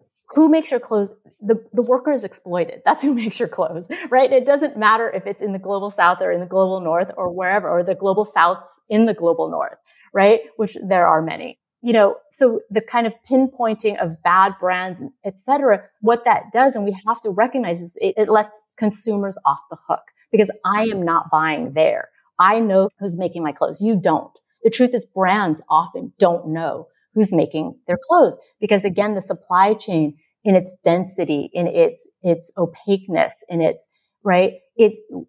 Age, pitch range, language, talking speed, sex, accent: 30-49, 180-230 Hz, English, 195 wpm, female, American